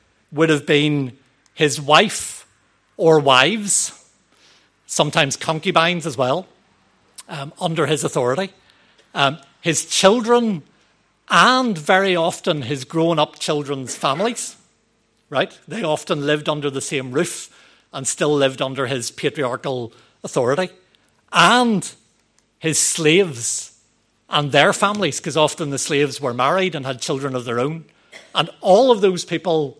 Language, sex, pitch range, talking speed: English, male, 140-170 Hz, 125 wpm